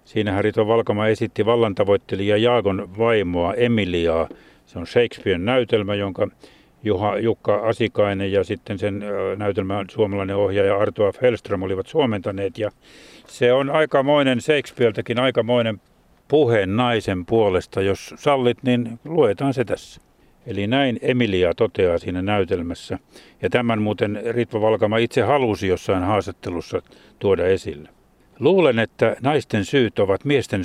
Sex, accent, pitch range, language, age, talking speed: male, native, 100-120 Hz, Finnish, 60-79, 125 wpm